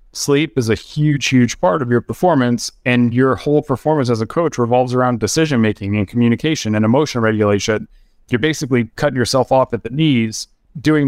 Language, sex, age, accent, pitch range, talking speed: English, male, 30-49, American, 110-130 Hz, 180 wpm